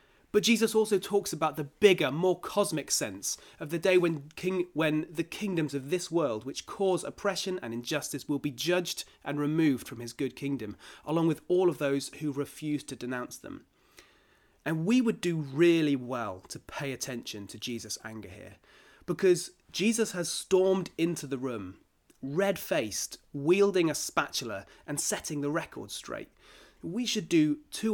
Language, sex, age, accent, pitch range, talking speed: English, male, 30-49, British, 130-180 Hz, 170 wpm